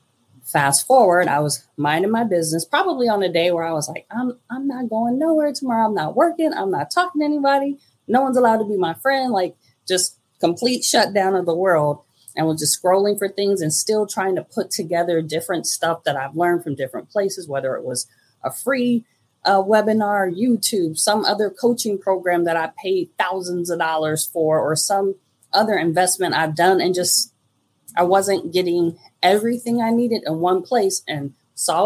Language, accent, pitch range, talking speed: English, American, 155-250 Hz, 190 wpm